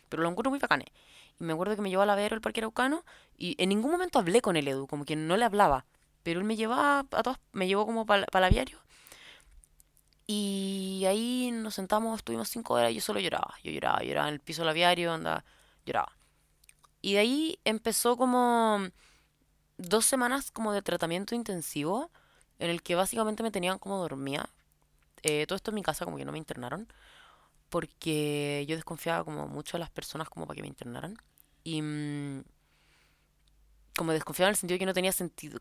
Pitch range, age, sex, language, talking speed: 150-210 Hz, 20-39, female, Spanish, 200 wpm